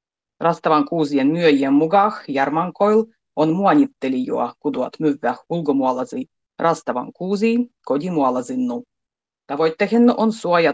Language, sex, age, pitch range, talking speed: Finnish, female, 30-49, 140-220 Hz, 85 wpm